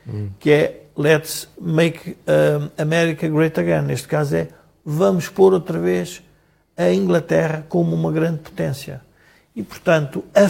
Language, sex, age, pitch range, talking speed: Portuguese, male, 50-69, 145-175 Hz, 130 wpm